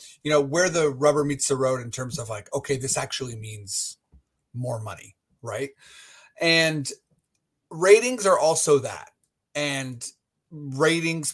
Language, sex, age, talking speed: English, male, 30-49, 140 wpm